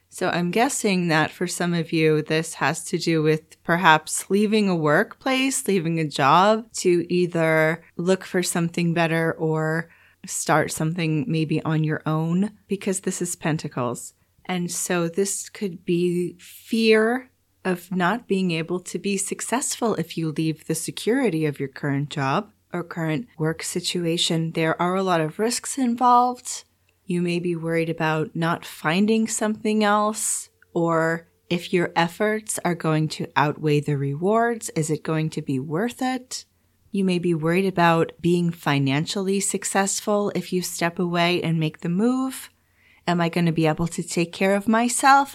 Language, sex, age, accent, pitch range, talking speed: English, female, 30-49, American, 160-205 Hz, 165 wpm